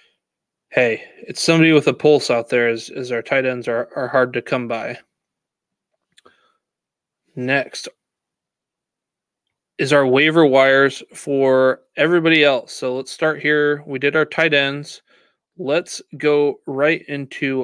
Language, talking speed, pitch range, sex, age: English, 135 wpm, 130-160 Hz, male, 20-39